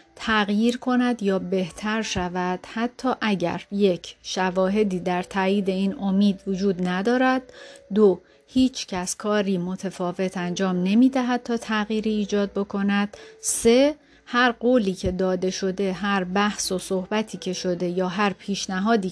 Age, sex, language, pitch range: 30-49, female, Persian, 190-225 Hz